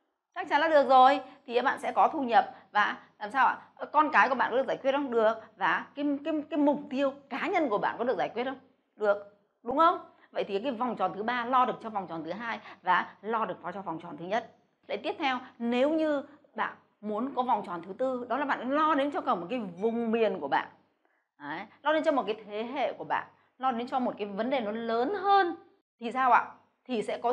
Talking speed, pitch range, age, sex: 255 wpm, 215-285 Hz, 20-39, female